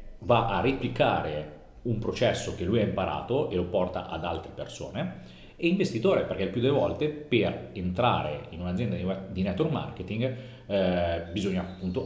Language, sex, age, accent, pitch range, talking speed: Italian, male, 30-49, native, 90-120 Hz, 155 wpm